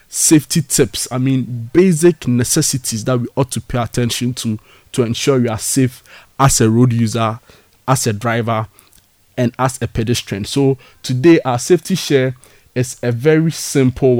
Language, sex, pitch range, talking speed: English, male, 115-140 Hz, 160 wpm